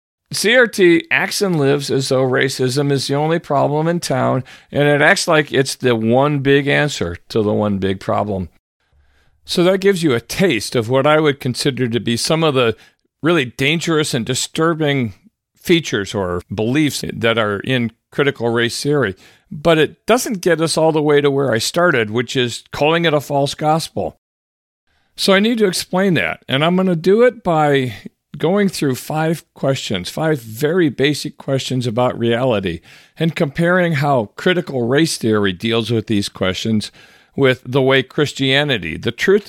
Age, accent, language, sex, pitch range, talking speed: 50-69, American, English, male, 110-155 Hz, 175 wpm